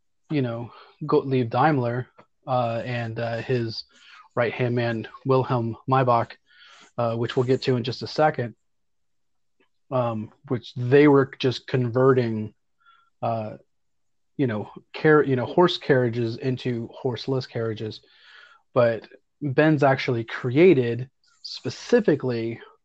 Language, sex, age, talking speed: English, male, 30-49, 115 wpm